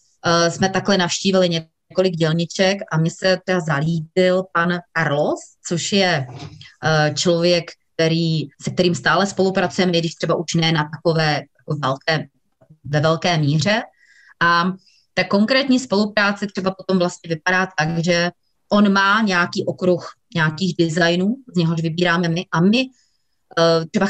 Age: 30-49